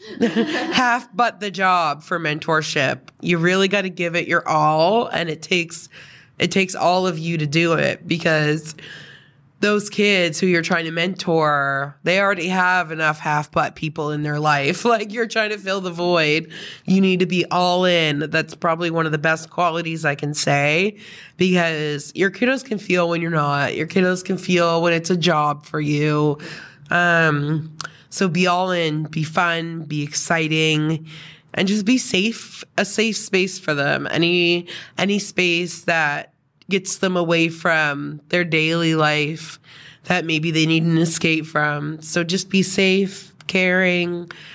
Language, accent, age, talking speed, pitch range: English, American, 20-39, 165 wpm, 155-185 Hz